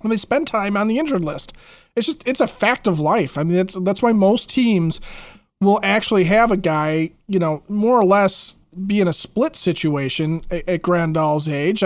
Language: English